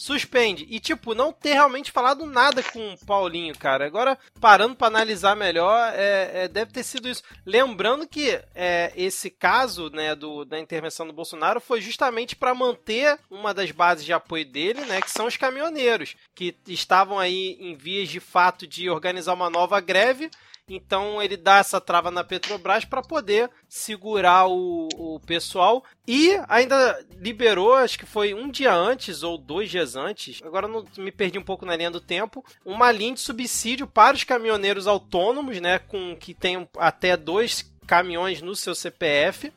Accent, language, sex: Brazilian, Portuguese, male